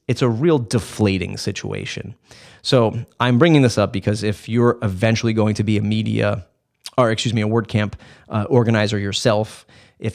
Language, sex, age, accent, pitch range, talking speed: English, male, 30-49, American, 105-120 Hz, 165 wpm